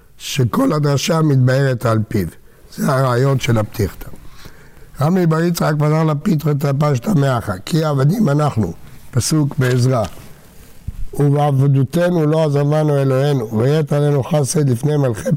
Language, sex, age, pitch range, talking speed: Hebrew, male, 60-79, 130-155 Hz, 120 wpm